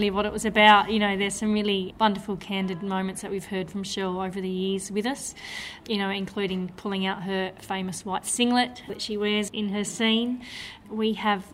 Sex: female